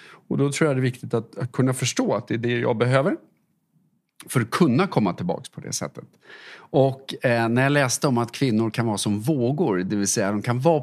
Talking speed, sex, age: 240 wpm, male, 30-49